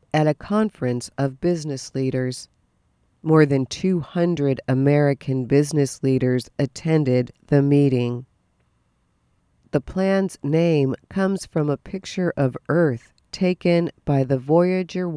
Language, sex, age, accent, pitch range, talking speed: English, female, 50-69, American, 130-170 Hz, 110 wpm